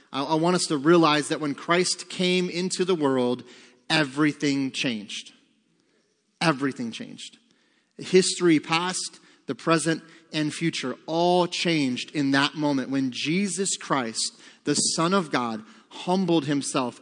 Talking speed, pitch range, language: 125 wpm, 150-185 Hz, English